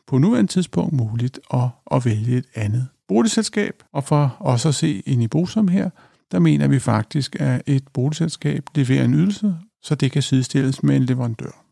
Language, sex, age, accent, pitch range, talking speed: Danish, male, 50-69, native, 125-170 Hz, 185 wpm